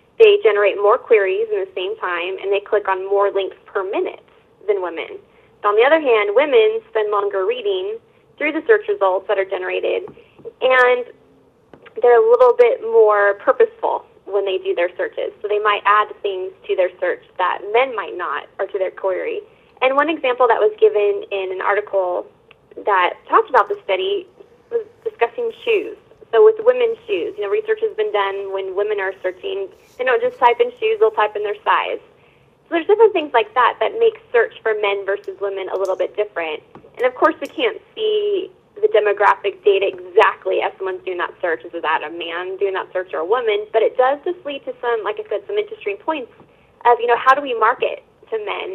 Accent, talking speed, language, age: American, 205 wpm, English, 20-39